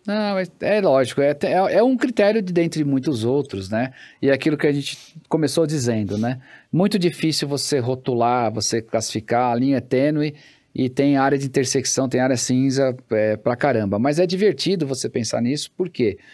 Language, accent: Portuguese, Brazilian